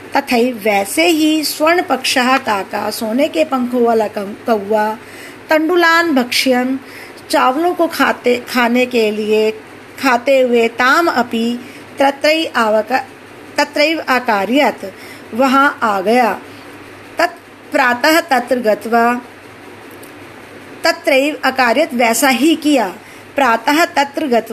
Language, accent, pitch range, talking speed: Hindi, native, 230-295 Hz, 95 wpm